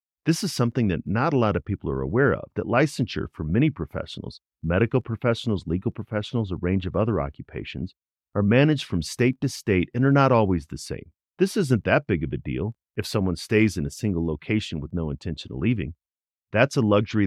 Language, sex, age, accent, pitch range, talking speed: English, male, 40-59, American, 85-120 Hz, 210 wpm